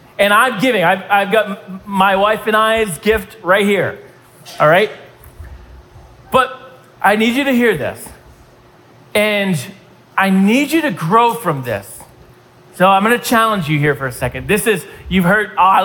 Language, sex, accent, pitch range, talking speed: English, male, American, 165-235 Hz, 170 wpm